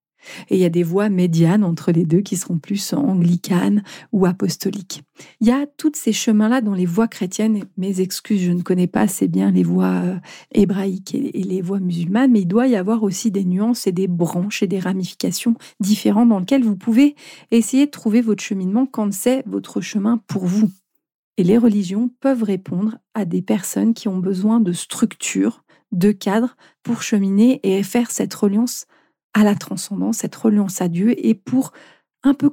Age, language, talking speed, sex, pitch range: 40-59, French, 190 wpm, female, 190-235 Hz